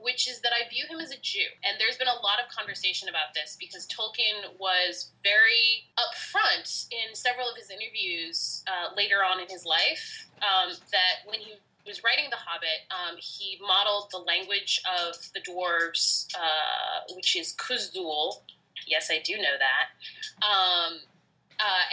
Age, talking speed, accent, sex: 20-39, 165 wpm, American, female